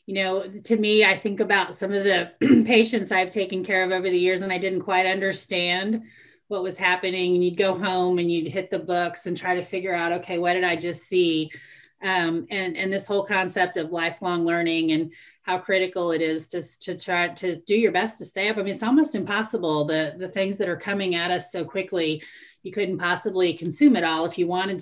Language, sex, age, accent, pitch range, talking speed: English, female, 30-49, American, 170-205 Hz, 225 wpm